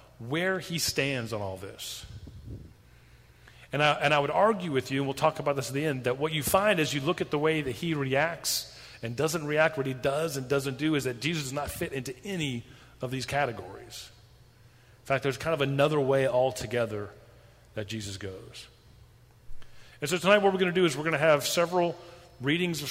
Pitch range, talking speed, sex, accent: 120-145 Hz, 210 wpm, male, American